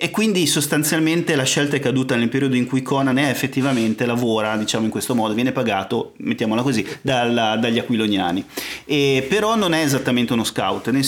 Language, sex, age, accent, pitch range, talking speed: Italian, male, 30-49, native, 110-130 Hz, 185 wpm